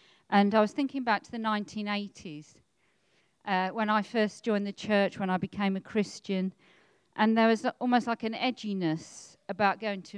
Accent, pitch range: British, 180-220 Hz